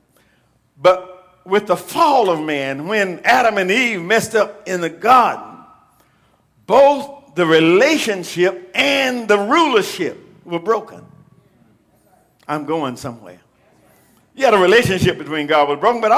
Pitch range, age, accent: 185-255 Hz, 50-69, American